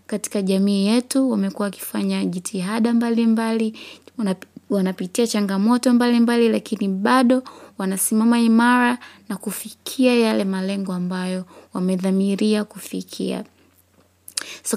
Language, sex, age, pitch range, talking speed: English, female, 20-39, 185-215 Hz, 95 wpm